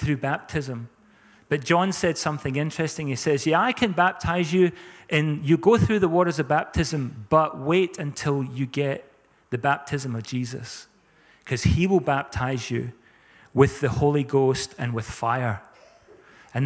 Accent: British